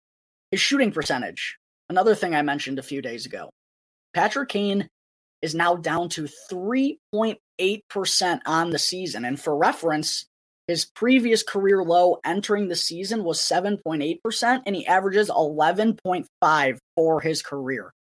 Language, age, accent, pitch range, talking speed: English, 20-39, American, 160-215 Hz, 160 wpm